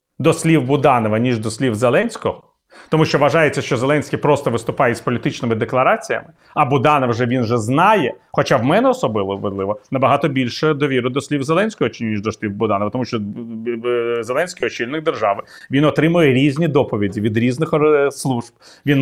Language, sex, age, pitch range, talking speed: Ukrainian, male, 30-49, 120-160 Hz, 160 wpm